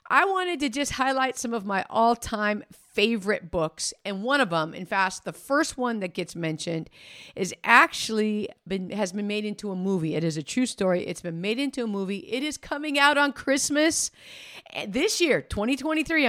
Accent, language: American, English